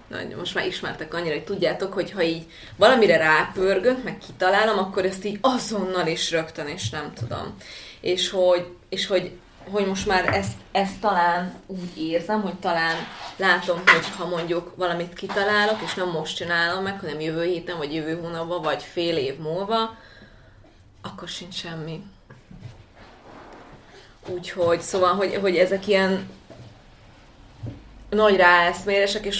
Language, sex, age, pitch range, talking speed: Hungarian, female, 20-39, 160-185 Hz, 135 wpm